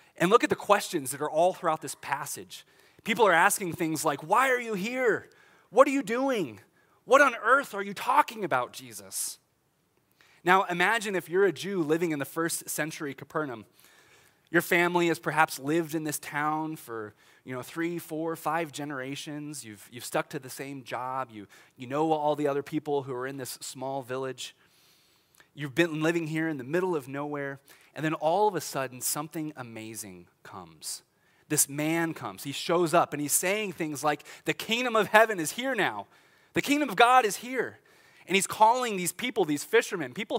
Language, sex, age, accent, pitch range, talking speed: English, male, 20-39, American, 140-195 Hz, 190 wpm